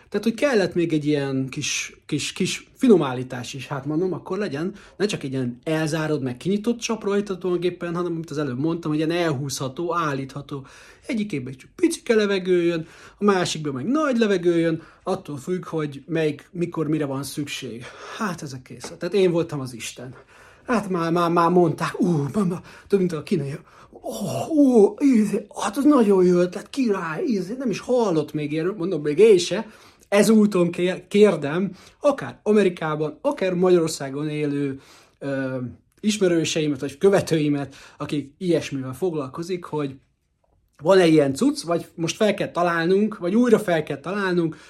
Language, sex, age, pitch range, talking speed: Hungarian, male, 30-49, 150-195 Hz, 155 wpm